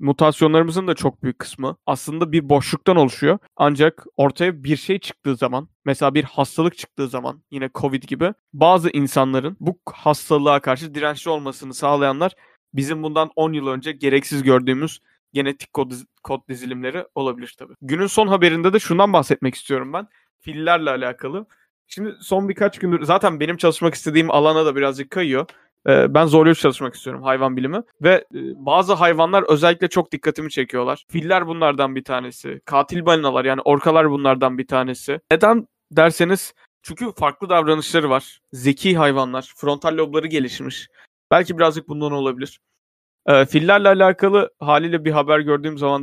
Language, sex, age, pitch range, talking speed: Turkish, male, 30-49, 140-175 Hz, 145 wpm